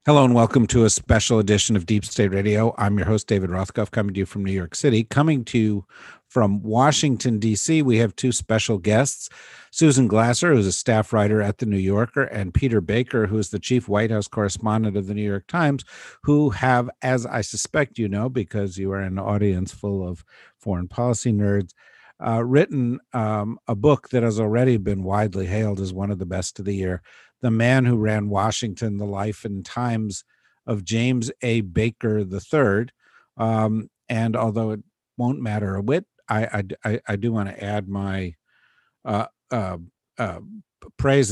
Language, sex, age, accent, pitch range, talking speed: English, male, 50-69, American, 100-120 Hz, 190 wpm